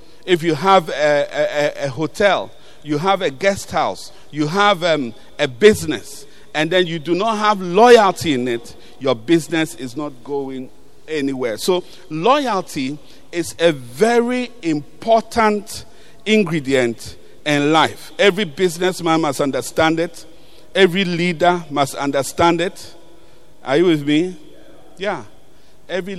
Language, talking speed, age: English, 130 wpm, 50-69